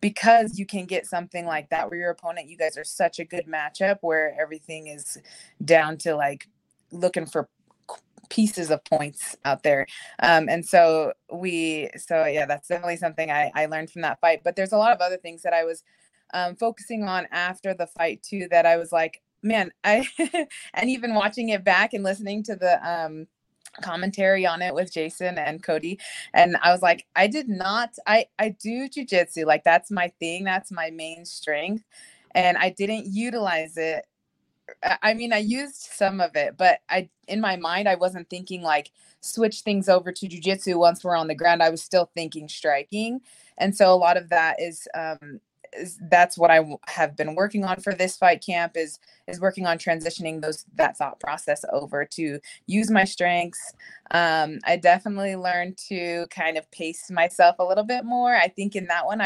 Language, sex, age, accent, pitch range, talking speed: English, female, 20-39, American, 160-195 Hz, 195 wpm